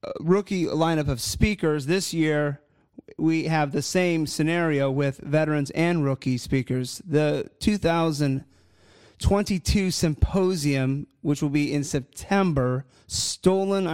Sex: male